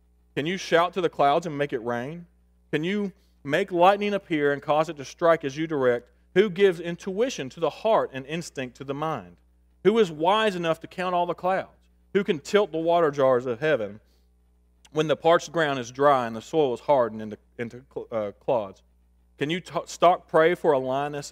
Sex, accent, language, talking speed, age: male, American, English, 205 wpm, 40-59